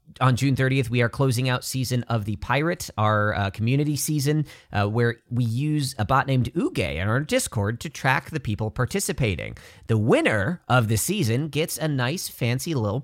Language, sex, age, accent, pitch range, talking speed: English, male, 40-59, American, 115-160 Hz, 190 wpm